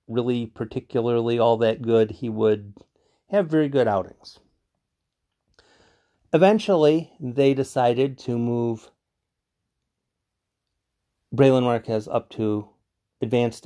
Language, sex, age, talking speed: English, male, 40-59, 90 wpm